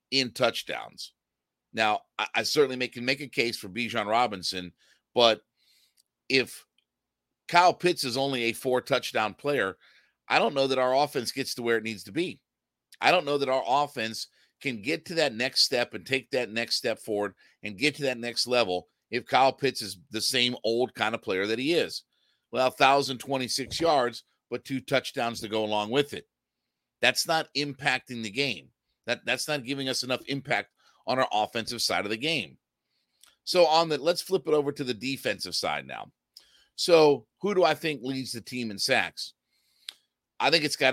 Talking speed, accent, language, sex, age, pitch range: 190 wpm, American, English, male, 50-69, 110-140 Hz